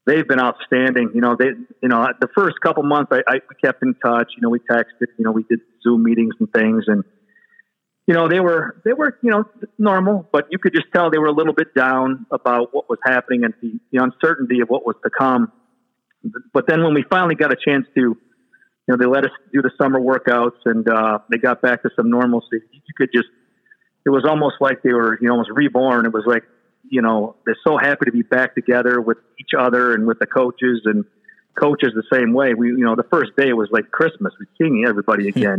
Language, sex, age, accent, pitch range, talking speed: English, male, 50-69, American, 120-155 Hz, 235 wpm